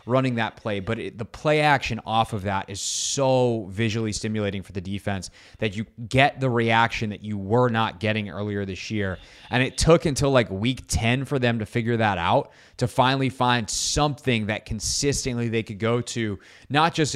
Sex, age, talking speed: male, 20-39, 190 wpm